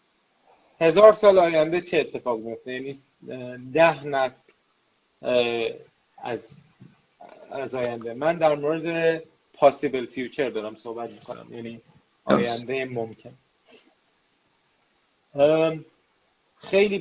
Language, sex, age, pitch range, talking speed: Persian, male, 30-49, 125-165 Hz, 80 wpm